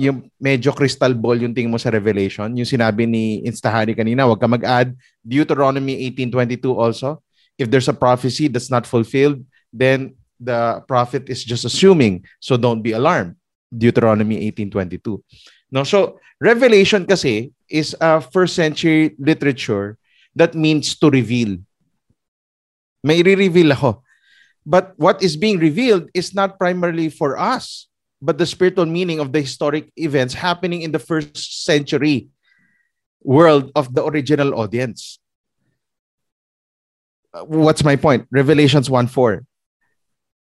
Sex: male